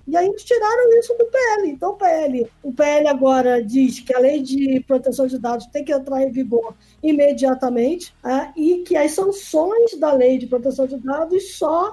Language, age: Portuguese, 20-39